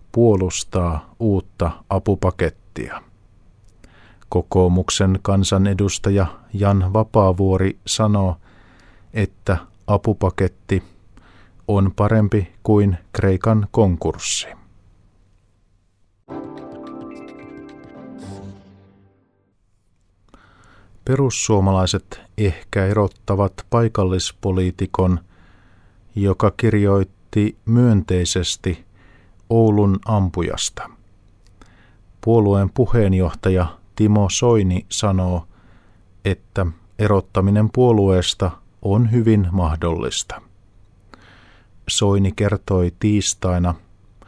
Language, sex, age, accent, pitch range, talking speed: Finnish, male, 50-69, native, 95-105 Hz, 50 wpm